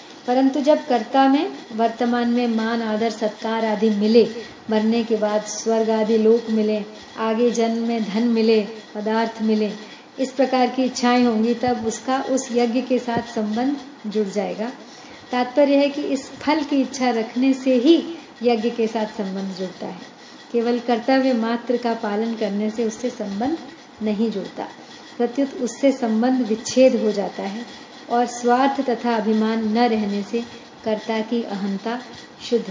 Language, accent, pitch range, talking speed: Hindi, native, 225-265 Hz, 155 wpm